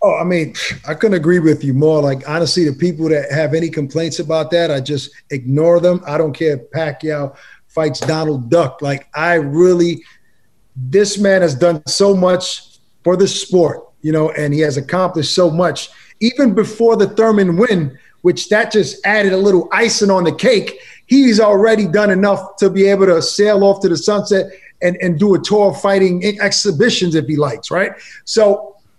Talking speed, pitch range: 195 wpm, 170-230 Hz